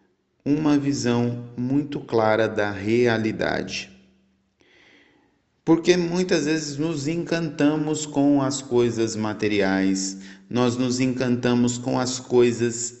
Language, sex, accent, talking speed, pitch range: Portuguese, male, Brazilian, 95 wpm, 105-140 Hz